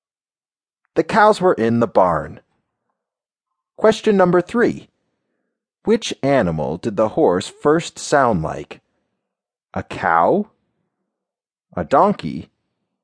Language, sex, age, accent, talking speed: English, male, 40-59, American, 95 wpm